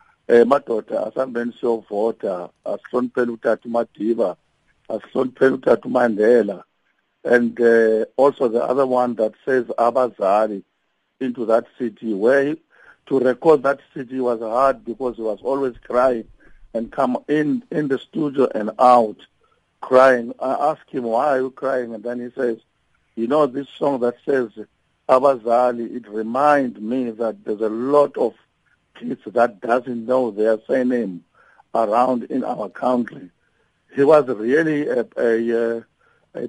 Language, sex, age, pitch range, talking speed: English, male, 60-79, 115-135 Hz, 130 wpm